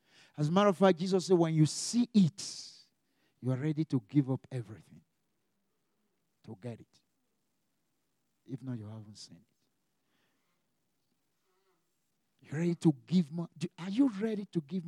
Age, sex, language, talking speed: 60-79, male, English, 150 wpm